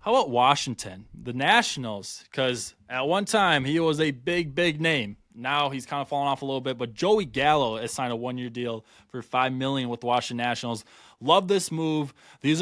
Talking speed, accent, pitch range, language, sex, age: 205 wpm, American, 125-165 Hz, English, male, 20-39